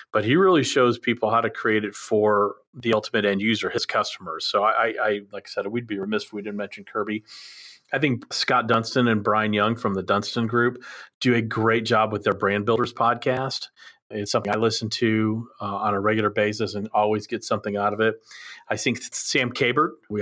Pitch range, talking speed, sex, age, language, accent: 105-125 Hz, 215 wpm, male, 40-59, English, American